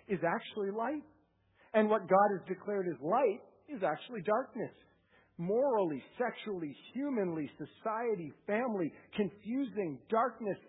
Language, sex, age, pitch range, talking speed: English, male, 50-69, 160-230 Hz, 110 wpm